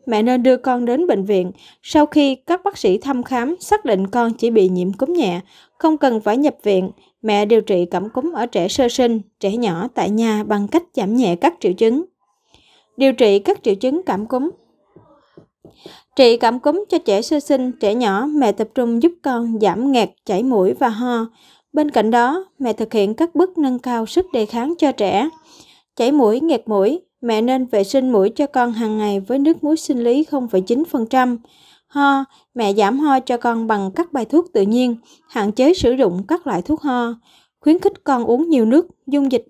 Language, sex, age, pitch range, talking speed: Vietnamese, female, 20-39, 220-290 Hz, 205 wpm